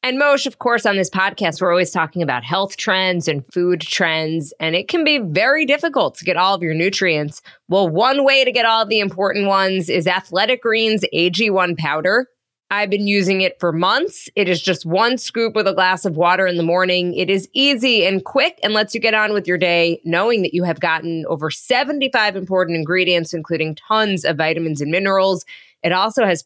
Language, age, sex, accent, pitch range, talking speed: English, 20-39, female, American, 175-230 Hz, 210 wpm